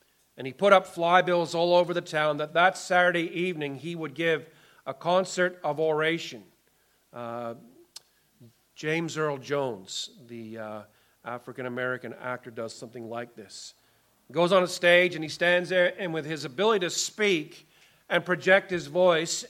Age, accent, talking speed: 40-59, American, 155 wpm